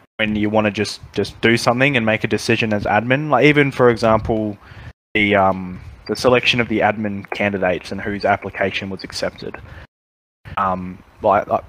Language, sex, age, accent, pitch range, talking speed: English, male, 20-39, Australian, 95-120 Hz, 170 wpm